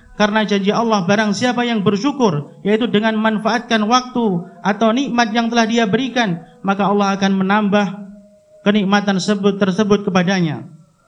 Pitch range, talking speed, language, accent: 195-235 Hz, 130 wpm, Indonesian, native